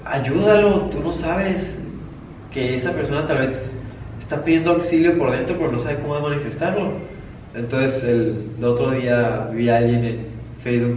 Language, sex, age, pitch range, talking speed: Spanish, male, 20-39, 120-150 Hz, 155 wpm